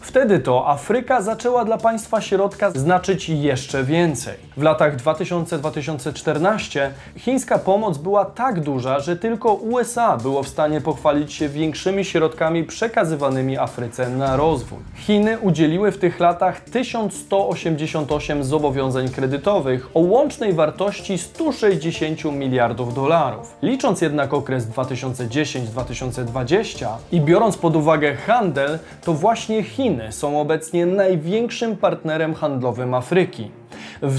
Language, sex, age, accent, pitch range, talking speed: Polish, male, 20-39, native, 145-195 Hz, 115 wpm